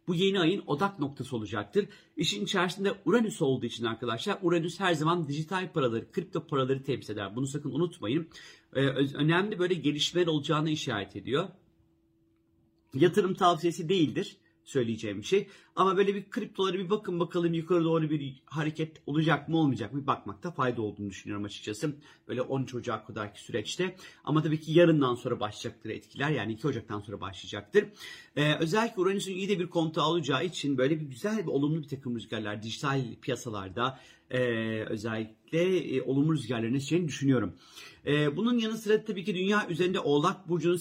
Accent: native